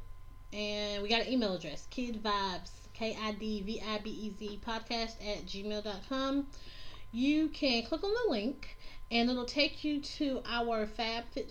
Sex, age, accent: female, 30-49, American